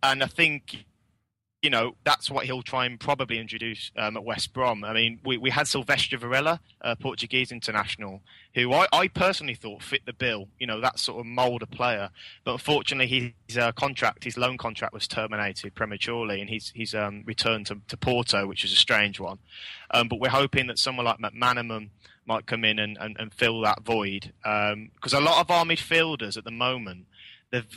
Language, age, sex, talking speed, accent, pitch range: English, 20-39, male, 205 wpm, British, 110-130 Hz